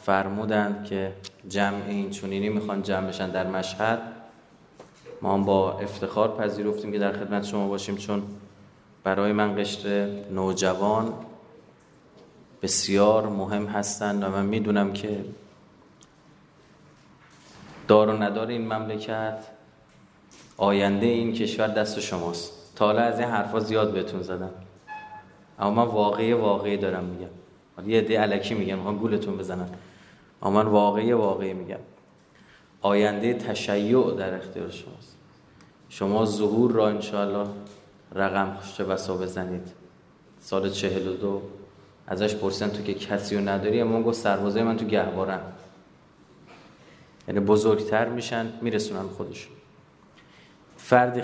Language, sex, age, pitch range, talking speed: Persian, male, 30-49, 100-110 Hz, 120 wpm